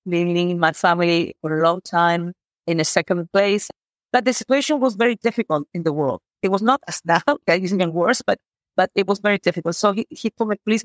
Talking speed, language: 240 wpm, English